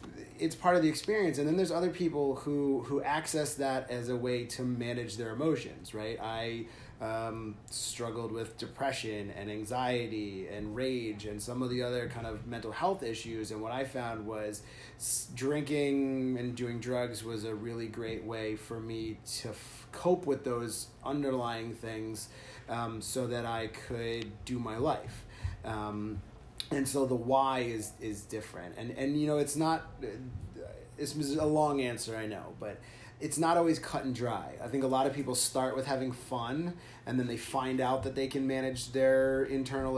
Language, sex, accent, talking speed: English, male, American, 180 wpm